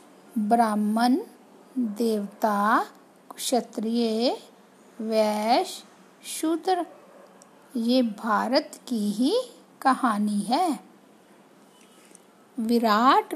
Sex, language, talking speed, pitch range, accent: female, Hindi, 55 wpm, 225-300 Hz, native